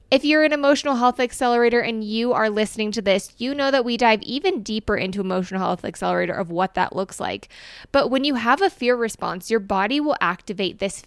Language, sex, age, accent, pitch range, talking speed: English, female, 20-39, American, 195-245 Hz, 215 wpm